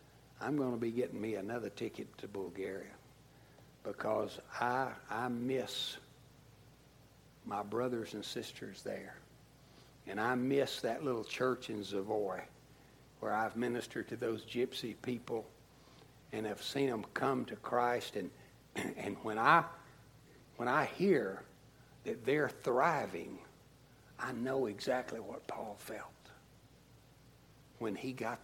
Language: English